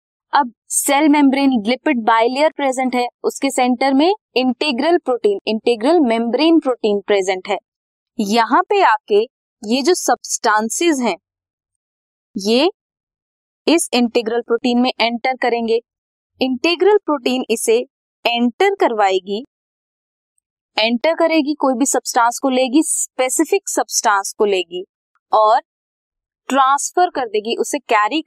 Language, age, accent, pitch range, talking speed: Hindi, 20-39, native, 230-345 Hz, 110 wpm